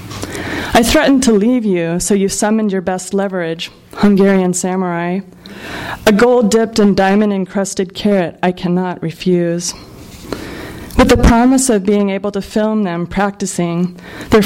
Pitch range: 175-210 Hz